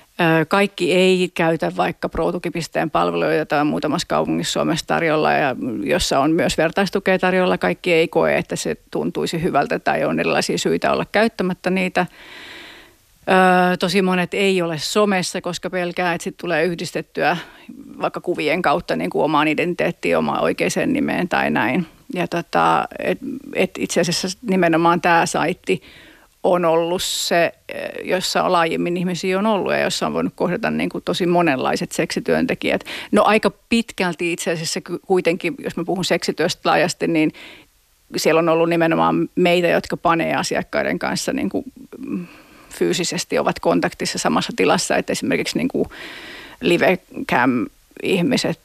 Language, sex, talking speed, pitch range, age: Finnish, female, 135 wpm, 170-190 Hz, 40-59